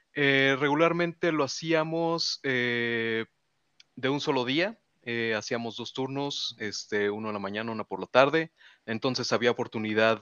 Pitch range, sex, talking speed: 105-135 Hz, male, 145 wpm